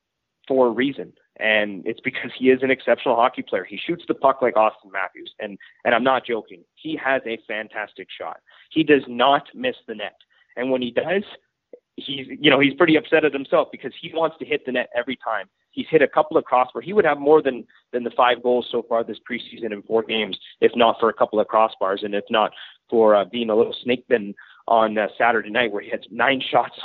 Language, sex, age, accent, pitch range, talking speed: English, male, 30-49, American, 115-150 Hz, 230 wpm